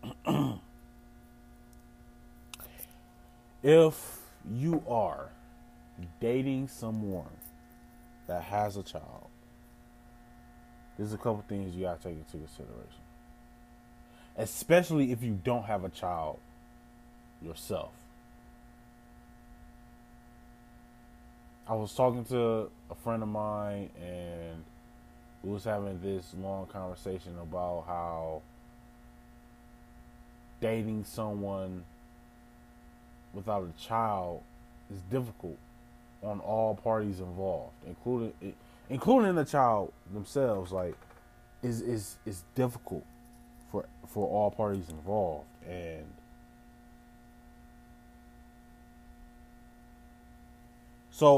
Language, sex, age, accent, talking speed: English, male, 20-39, American, 85 wpm